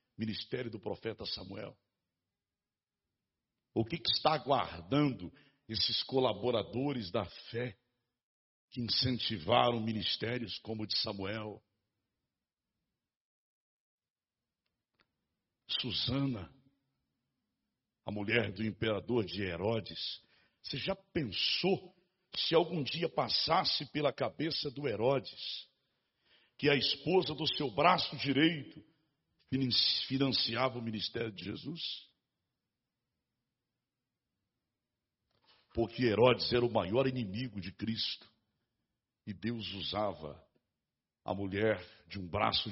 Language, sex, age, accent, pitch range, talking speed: Portuguese, male, 60-79, Brazilian, 105-130 Hz, 95 wpm